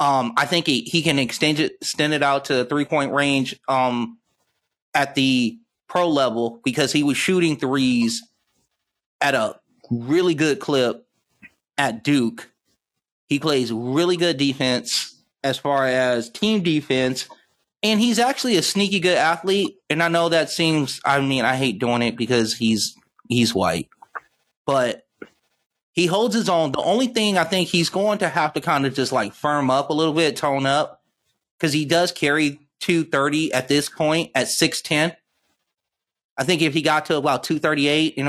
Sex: male